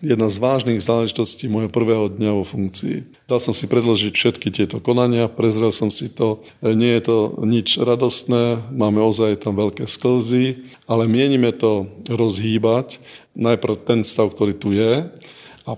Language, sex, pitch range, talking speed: Slovak, male, 110-125 Hz, 155 wpm